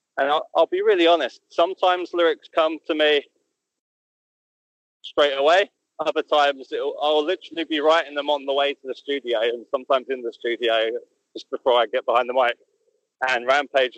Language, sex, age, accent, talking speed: English, male, 20-39, British, 175 wpm